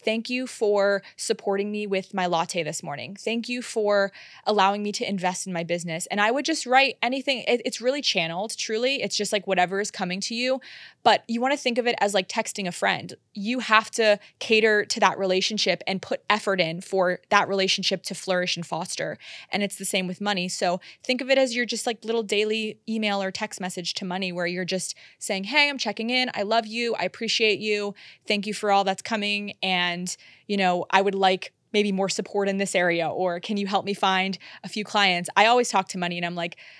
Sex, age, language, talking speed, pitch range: female, 20-39, English, 230 wpm, 185-220 Hz